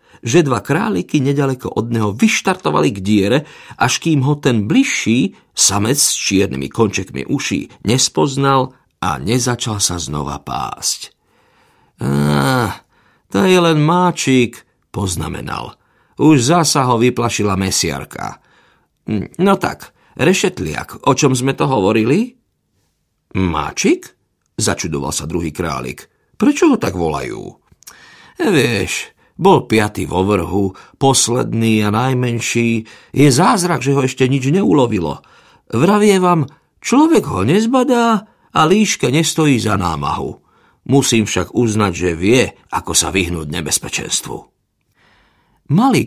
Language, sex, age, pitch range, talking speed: Slovak, male, 50-69, 95-160 Hz, 115 wpm